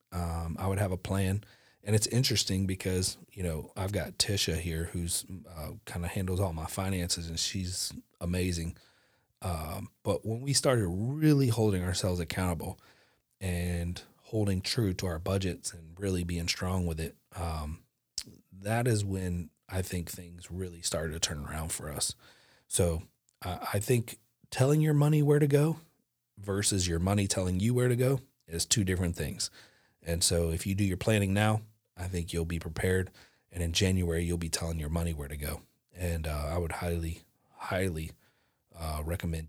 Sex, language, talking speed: male, English, 175 wpm